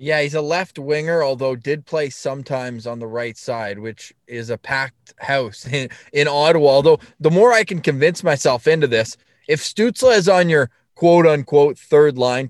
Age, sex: 20-39, male